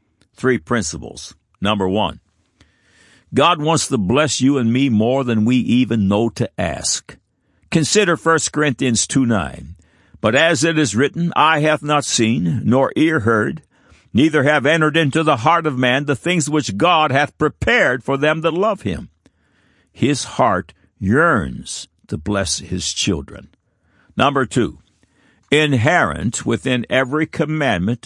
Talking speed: 145 wpm